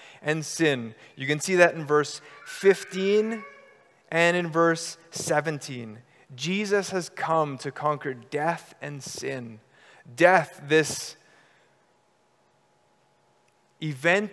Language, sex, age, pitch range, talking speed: English, male, 30-49, 140-175 Hz, 100 wpm